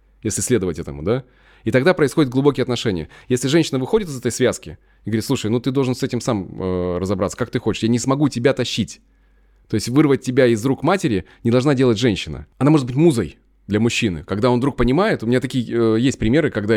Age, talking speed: 20-39, 220 wpm